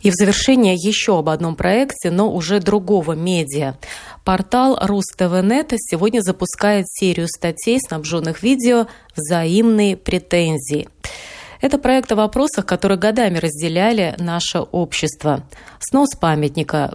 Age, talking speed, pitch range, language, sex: 30-49, 115 wpm, 155-205 Hz, Russian, female